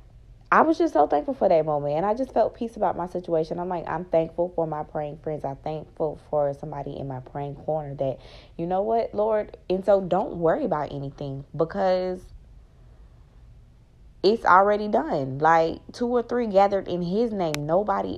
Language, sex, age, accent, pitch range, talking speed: English, female, 20-39, American, 155-195 Hz, 185 wpm